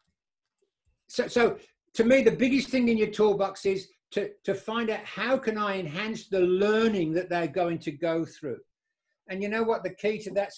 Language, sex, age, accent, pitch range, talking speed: English, male, 60-79, British, 180-220 Hz, 200 wpm